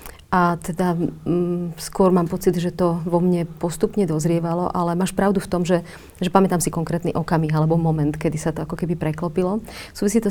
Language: Slovak